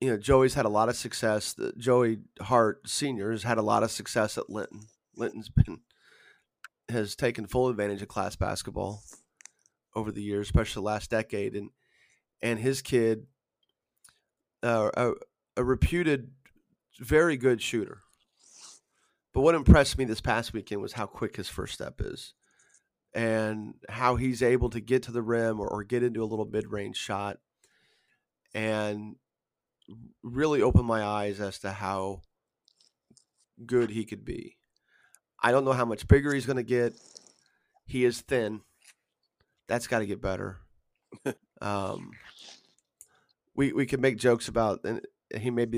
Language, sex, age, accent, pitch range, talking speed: English, male, 30-49, American, 105-130 Hz, 155 wpm